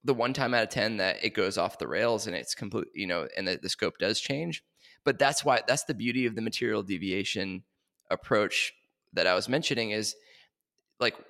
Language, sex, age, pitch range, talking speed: English, male, 20-39, 120-155 Hz, 210 wpm